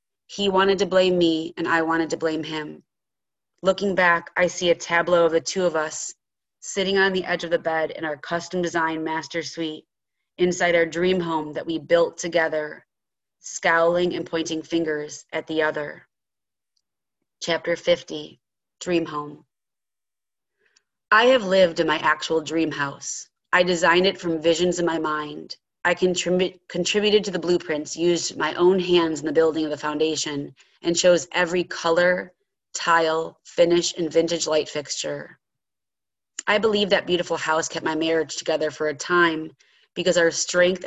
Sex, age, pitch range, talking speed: female, 30-49, 160-180 Hz, 160 wpm